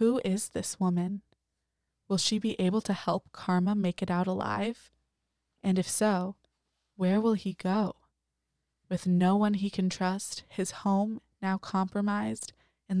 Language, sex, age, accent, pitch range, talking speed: English, female, 20-39, American, 175-205 Hz, 150 wpm